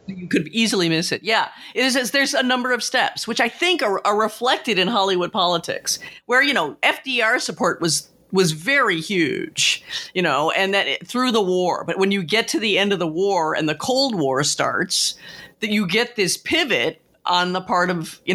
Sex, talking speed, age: female, 210 wpm, 40-59